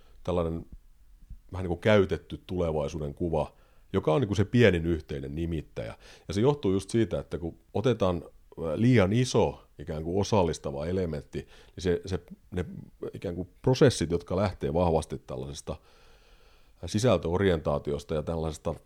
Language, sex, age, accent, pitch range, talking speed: Finnish, male, 40-59, native, 75-95 Hz, 130 wpm